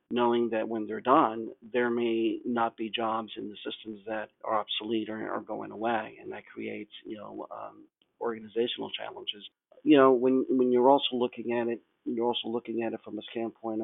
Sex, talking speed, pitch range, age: male, 195 wpm, 110-120 Hz, 50-69